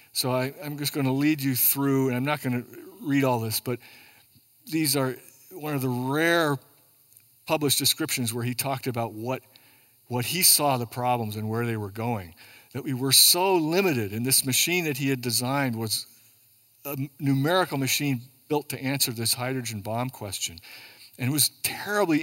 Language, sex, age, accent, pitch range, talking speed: English, male, 50-69, American, 120-140 Hz, 180 wpm